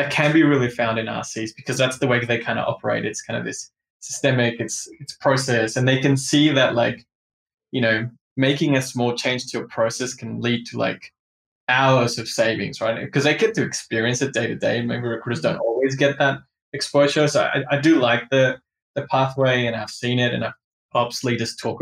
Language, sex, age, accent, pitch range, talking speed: English, male, 20-39, Australian, 115-135 Hz, 215 wpm